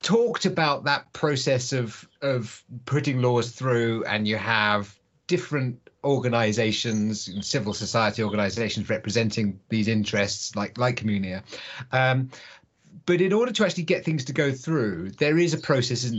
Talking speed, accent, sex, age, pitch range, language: 145 wpm, British, male, 30-49, 110-140 Hz, English